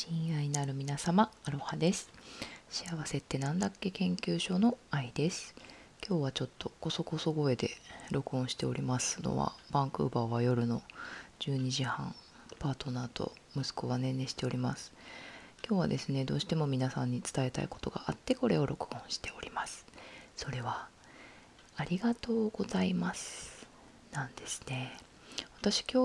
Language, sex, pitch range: Japanese, female, 130-175 Hz